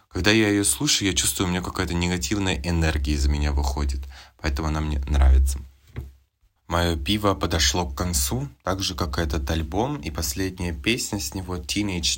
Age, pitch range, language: 20-39, 80-100 Hz, Russian